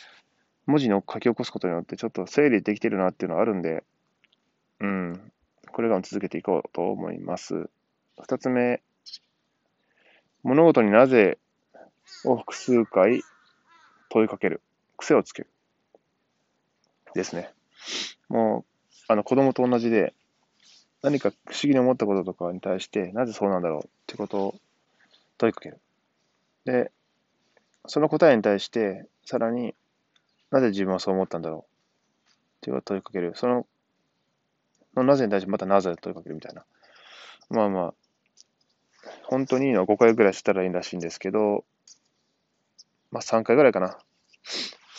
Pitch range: 95-120 Hz